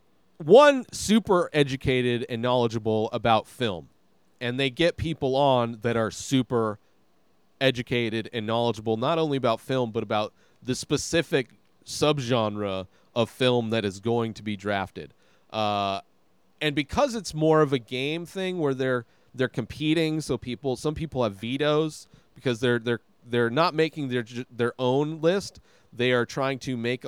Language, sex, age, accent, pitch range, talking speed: English, male, 30-49, American, 115-150 Hz, 155 wpm